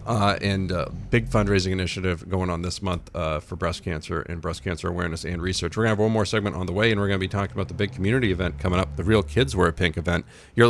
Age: 40-59